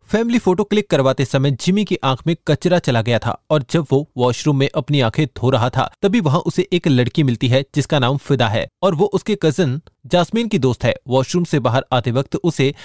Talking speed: 225 wpm